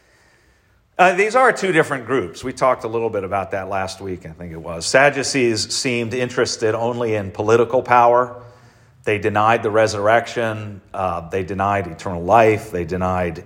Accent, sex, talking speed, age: American, male, 165 wpm, 40-59